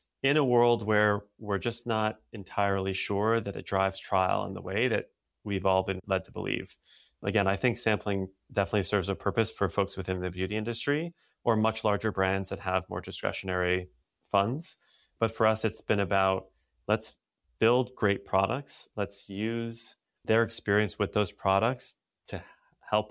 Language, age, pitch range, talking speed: English, 30-49, 95-110 Hz, 170 wpm